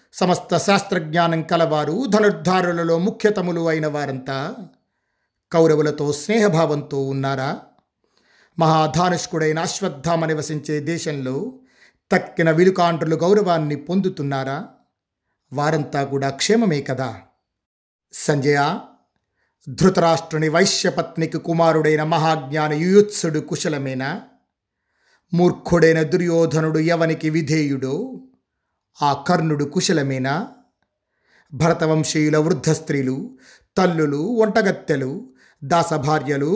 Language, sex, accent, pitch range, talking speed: Telugu, male, native, 150-180 Hz, 70 wpm